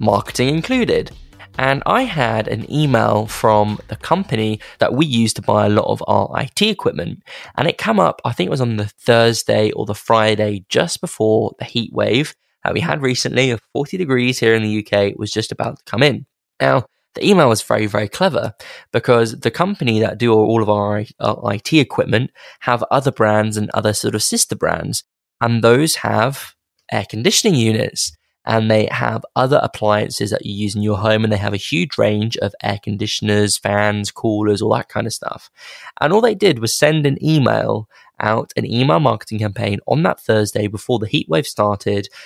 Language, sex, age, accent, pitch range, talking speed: English, male, 10-29, British, 105-125 Hz, 195 wpm